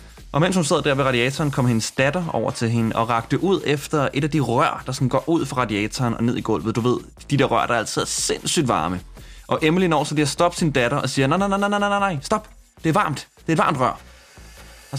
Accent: native